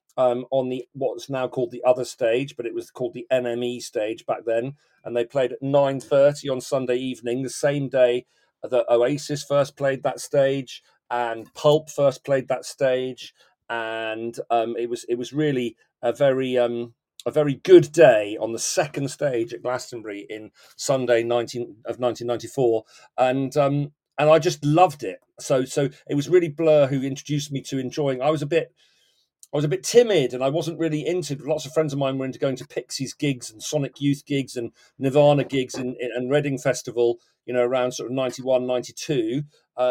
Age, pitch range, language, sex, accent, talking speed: 40-59, 125-145 Hz, English, male, British, 190 wpm